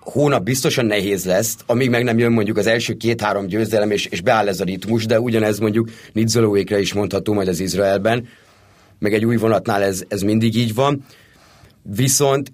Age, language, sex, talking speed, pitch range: 30-49, Hungarian, male, 180 wpm, 105-125 Hz